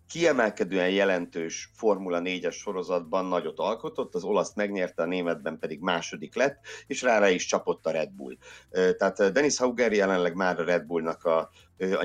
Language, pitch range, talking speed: Hungarian, 90-125 Hz, 160 wpm